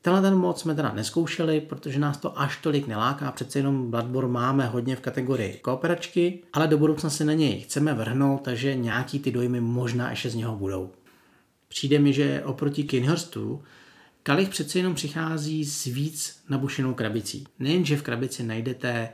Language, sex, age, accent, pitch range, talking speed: Czech, male, 40-59, native, 125-155 Hz, 170 wpm